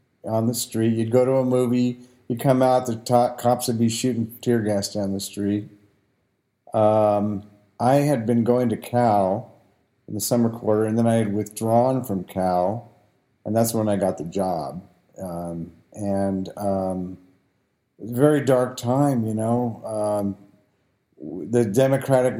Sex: male